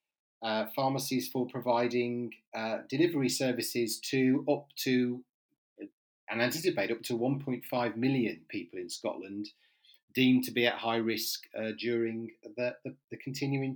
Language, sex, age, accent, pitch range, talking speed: English, male, 40-59, British, 110-135 Hz, 150 wpm